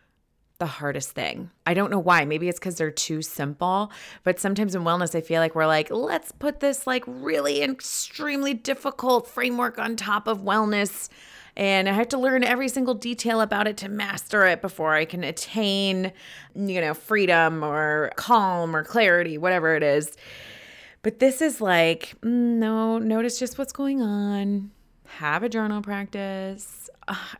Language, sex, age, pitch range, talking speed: English, female, 20-39, 160-230 Hz, 165 wpm